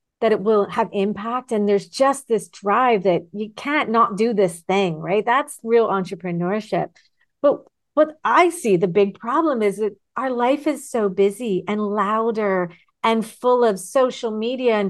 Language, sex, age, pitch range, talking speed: English, female, 40-59, 200-250 Hz, 175 wpm